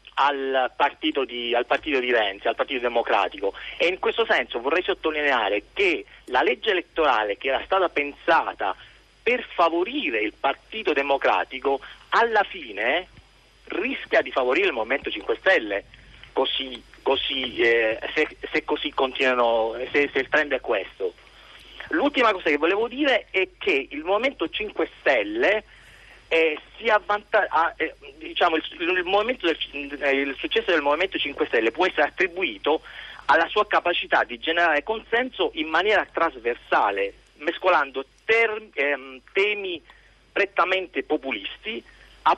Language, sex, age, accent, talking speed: Italian, male, 40-59, native, 120 wpm